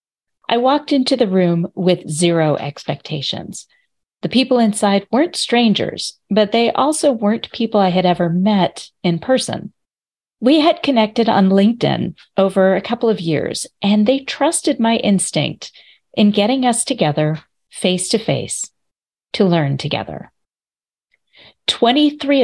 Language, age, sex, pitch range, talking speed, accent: English, 40-59, female, 180-230 Hz, 130 wpm, American